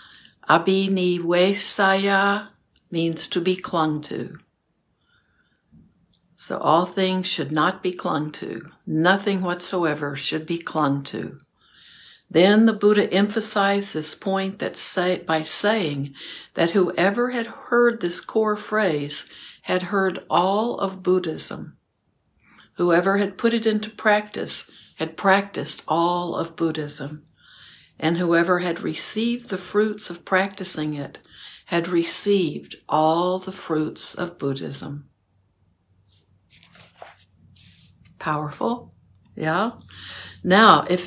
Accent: American